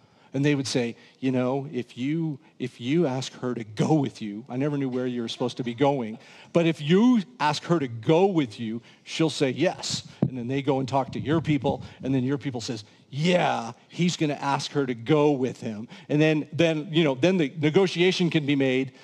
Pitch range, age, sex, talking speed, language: 125-165 Hz, 40-59, male, 230 wpm, English